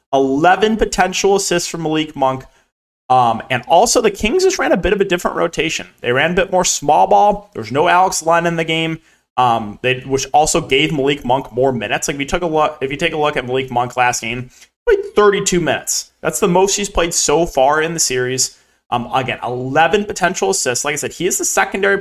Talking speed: 225 wpm